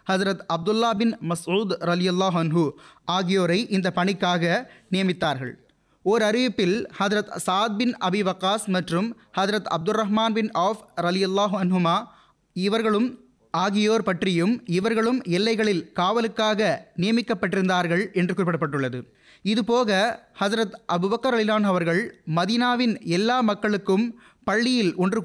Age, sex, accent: 30-49, male, native